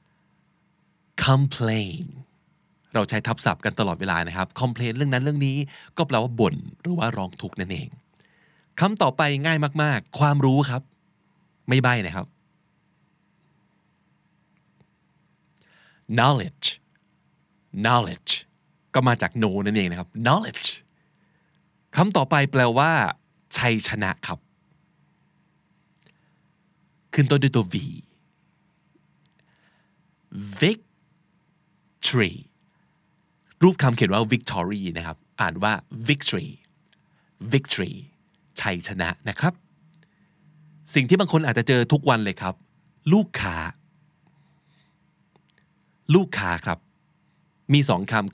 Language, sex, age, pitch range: Thai, male, 20-39, 115-170 Hz